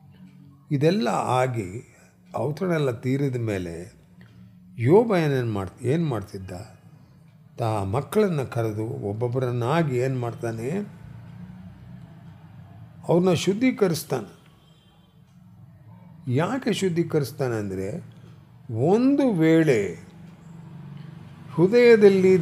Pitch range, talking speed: 115-165 Hz, 65 wpm